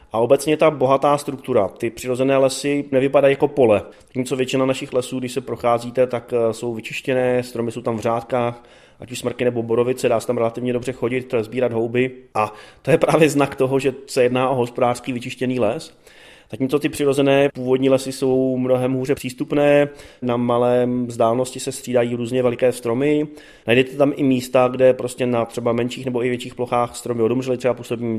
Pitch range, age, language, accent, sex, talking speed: 120-140 Hz, 30-49, Czech, native, male, 185 wpm